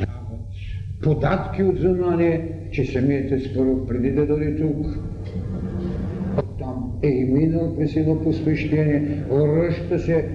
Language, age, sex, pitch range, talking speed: Bulgarian, 70-89, male, 95-155 Hz, 100 wpm